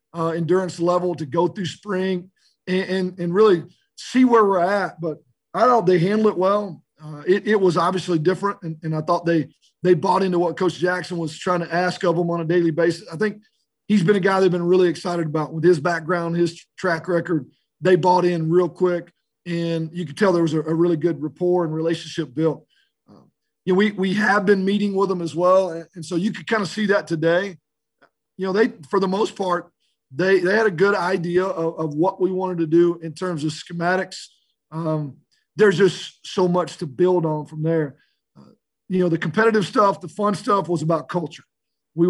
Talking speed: 220 wpm